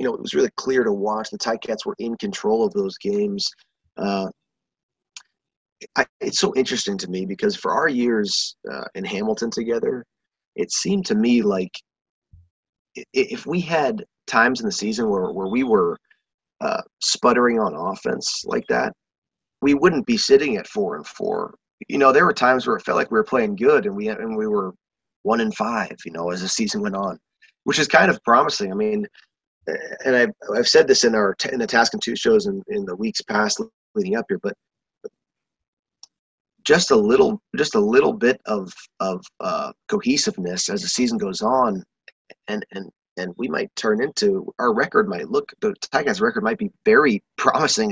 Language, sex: English, male